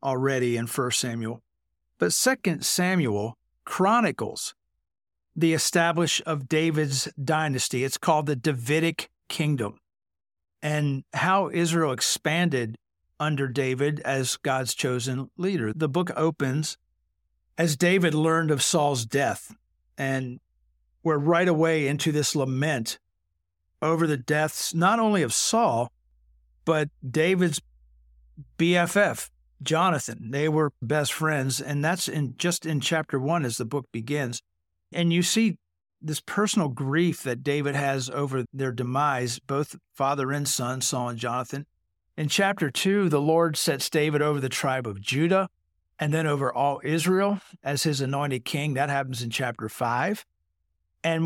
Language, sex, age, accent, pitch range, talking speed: English, male, 50-69, American, 120-160 Hz, 135 wpm